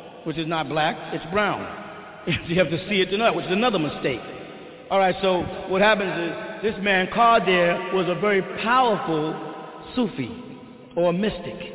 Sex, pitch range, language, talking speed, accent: male, 175-210 Hz, English, 175 wpm, American